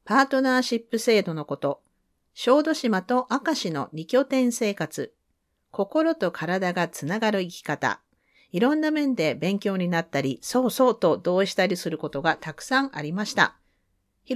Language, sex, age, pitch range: Japanese, female, 40-59, 160-260 Hz